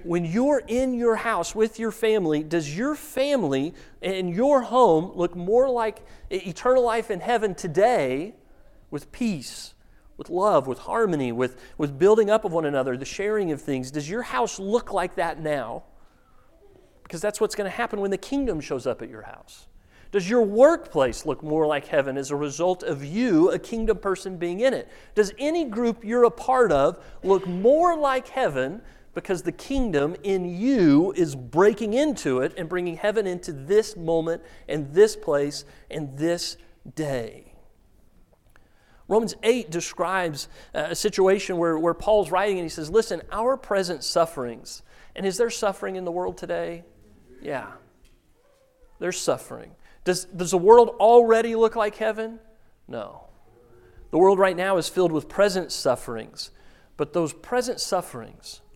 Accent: American